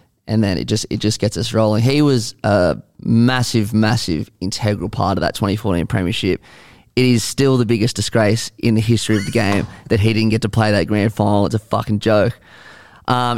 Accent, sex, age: Australian, male, 20-39